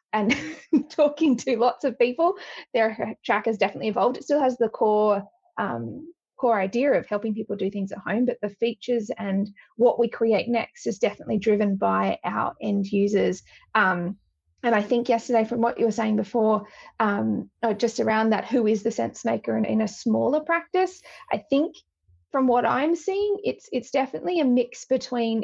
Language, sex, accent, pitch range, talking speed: English, female, Australian, 220-255 Hz, 185 wpm